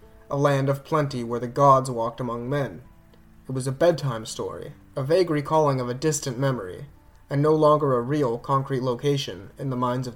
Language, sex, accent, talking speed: English, male, American, 195 wpm